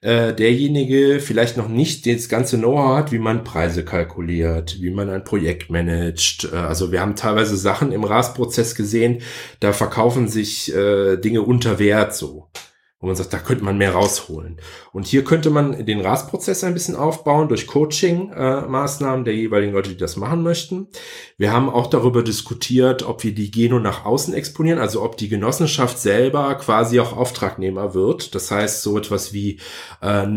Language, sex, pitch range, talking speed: German, male, 100-135 Hz, 170 wpm